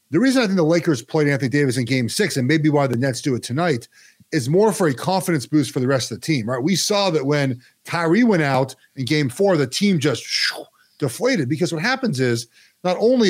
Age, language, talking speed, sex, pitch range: 40-59, English, 240 wpm, male, 140-190 Hz